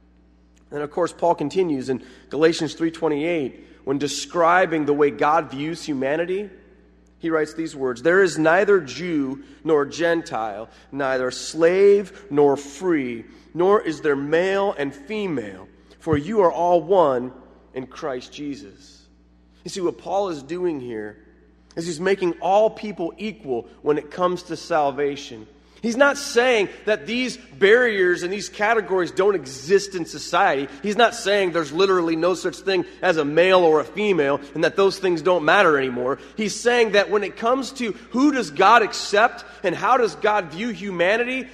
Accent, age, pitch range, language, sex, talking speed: American, 30-49, 140-205 Hz, English, male, 160 wpm